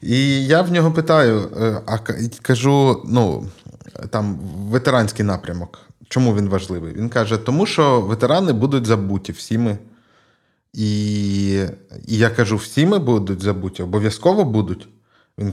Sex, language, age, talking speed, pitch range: male, Ukrainian, 20-39, 125 wpm, 105-130 Hz